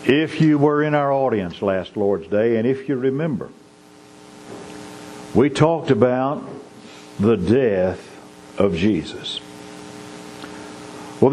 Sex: male